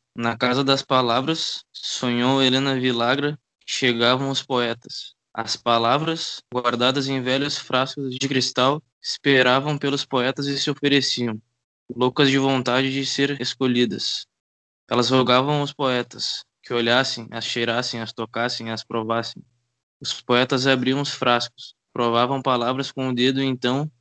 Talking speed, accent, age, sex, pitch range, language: 130 wpm, Brazilian, 10-29, male, 120-135 Hz, Portuguese